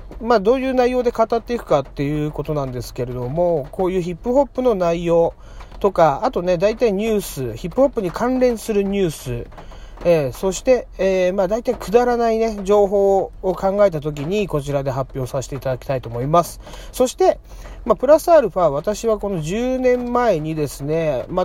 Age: 40-59